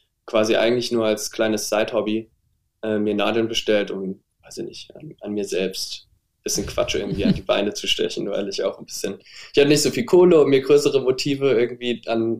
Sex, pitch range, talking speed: male, 110-130 Hz, 215 wpm